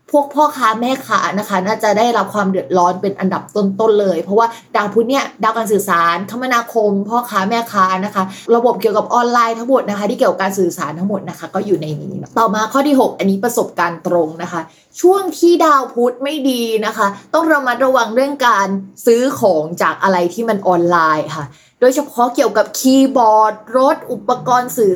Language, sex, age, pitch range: Thai, female, 20-39, 185-235 Hz